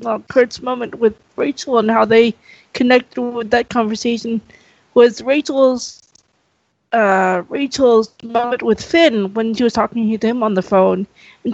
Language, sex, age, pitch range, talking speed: English, female, 20-39, 205-255 Hz, 150 wpm